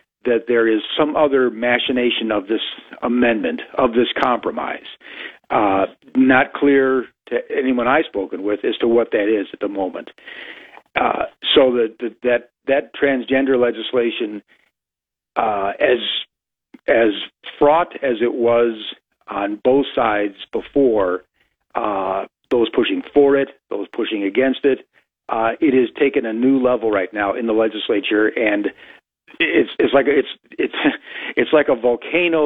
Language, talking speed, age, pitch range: English, 145 wpm, 50-69, 110-135 Hz